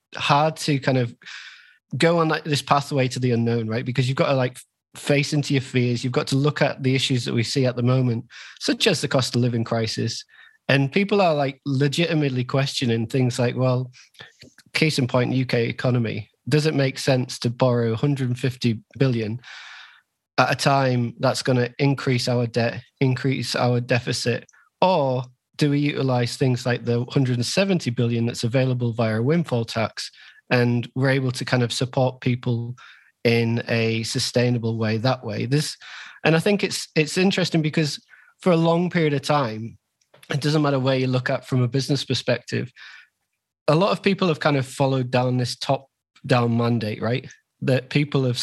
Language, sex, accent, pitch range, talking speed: English, male, British, 120-140 Hz, 180 wpm